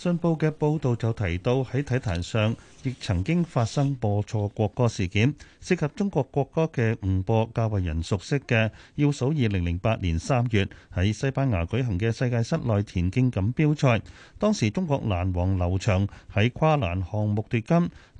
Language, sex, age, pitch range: Chinese, male, 30-49, 100-145 Hz